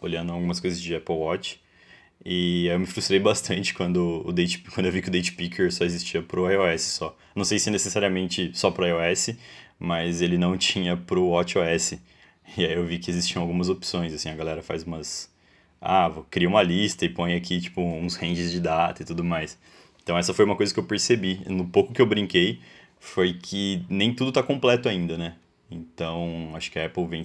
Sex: male